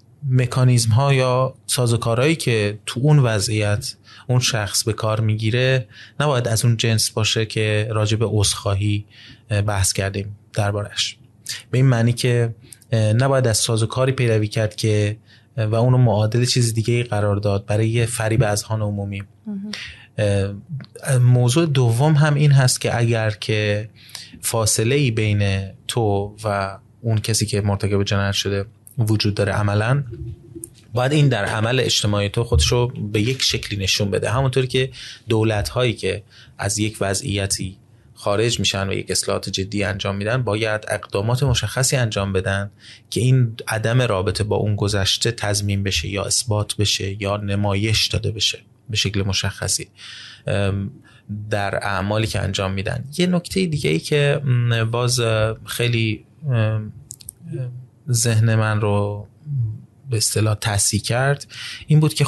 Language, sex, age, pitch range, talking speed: Persian, male, 20-39, 105-125 Hz, 140 wpm